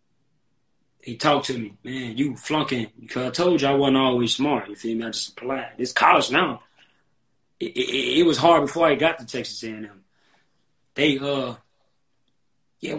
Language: English